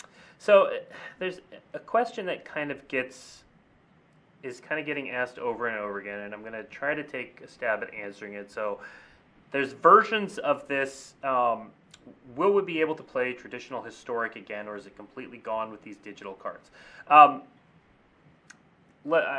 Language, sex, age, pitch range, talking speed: English, male, 30-49, 120-160 Hz, 170 wpm